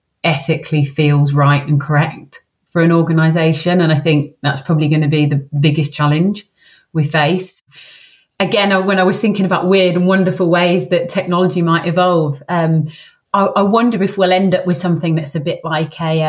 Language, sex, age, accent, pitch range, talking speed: English, female, 30-49, British, 155-190 Hz, 185 wpm